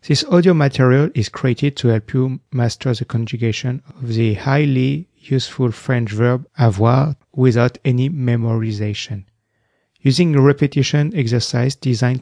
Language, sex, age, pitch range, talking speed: English, male, 40-59, 115-135 Hz, 130 wpm